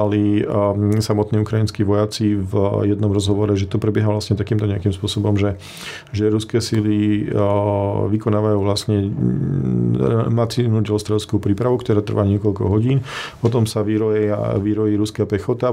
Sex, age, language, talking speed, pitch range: male, 40-59, Slovak, 115 wpm, 105-110 Hz